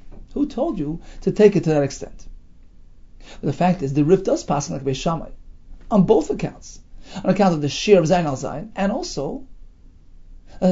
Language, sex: English, male